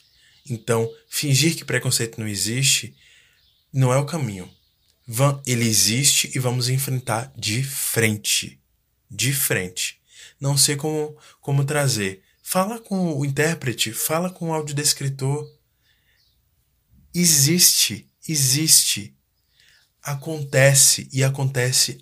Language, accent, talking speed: Portuguese, Brazilian, 100 wpm